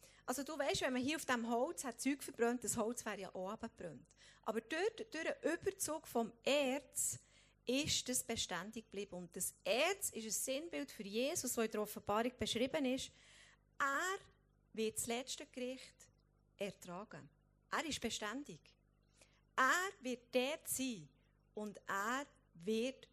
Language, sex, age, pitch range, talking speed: German, female, 30-49, 205-265 Hz, 150 wpm